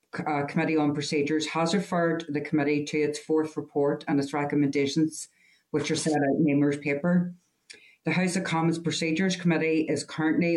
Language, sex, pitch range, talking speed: English, female, 145-170 Hz, 170 wpm